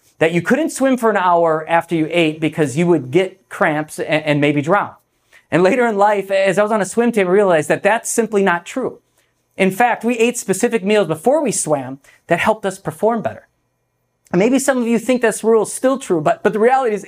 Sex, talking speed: male, 235 wpm